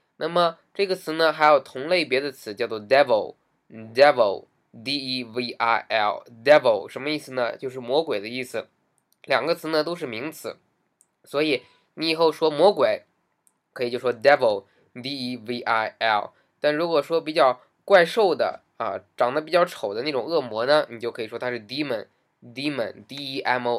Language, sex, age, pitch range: Chinese, male, 10-29, 125-155 Hz